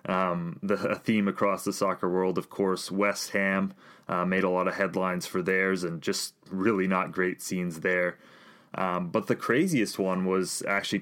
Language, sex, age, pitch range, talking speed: English, male, 20-39, 90-100 Hz, 185 wpm